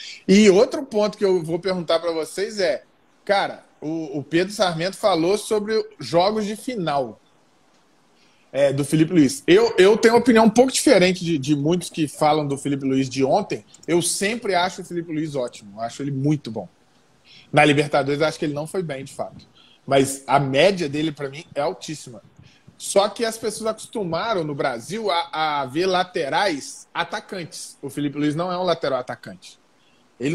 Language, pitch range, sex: Portuguese, 150-195 Hz, male